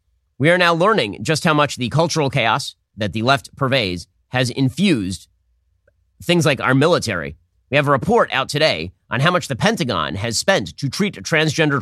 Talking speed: 185 wpm